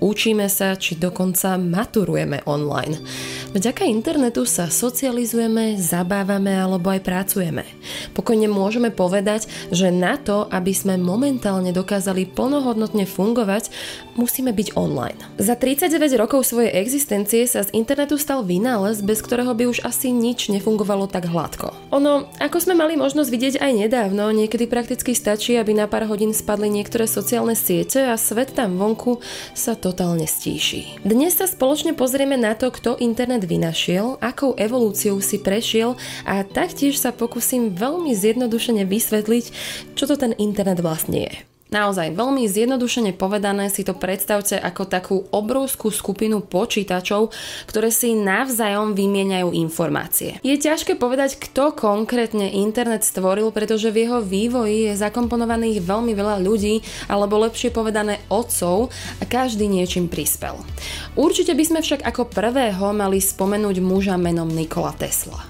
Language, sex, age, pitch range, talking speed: Slovak, female, 20-39, 190-245 Hz, 140 wpm